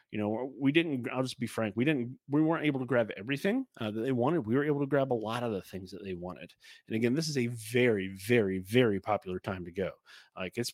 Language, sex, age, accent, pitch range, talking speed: English, male, 30-49, American, 105-130 Hz, 265 wpm